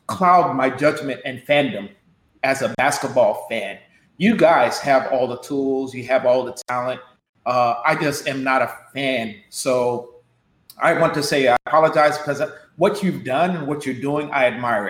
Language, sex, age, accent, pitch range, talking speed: English, male, 40-59, American, 140-190 Hz, 175 wpm